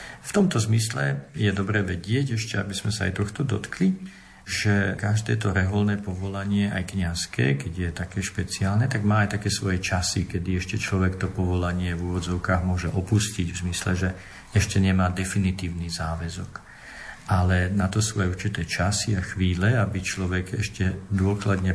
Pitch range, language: 90-105 Hz, Slovak